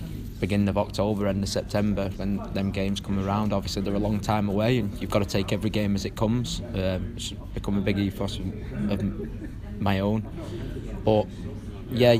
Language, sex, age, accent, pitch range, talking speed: English, male, 20-39, British, 100-110 Hz, 190 wpm